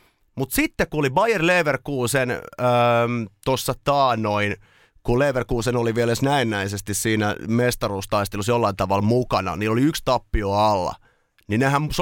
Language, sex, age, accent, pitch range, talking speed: Finnish, male, 30-49, native, 110-155 Hz, 130 wpm